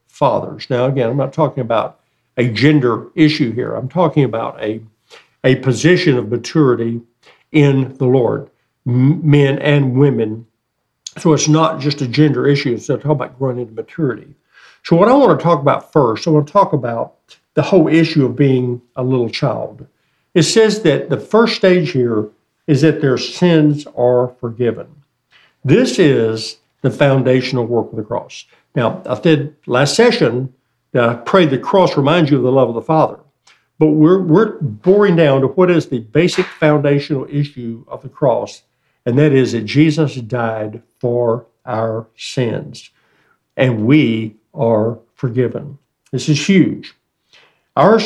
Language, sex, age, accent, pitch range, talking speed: English, male, 60-79, American, 120-155 Hz, 160 wpm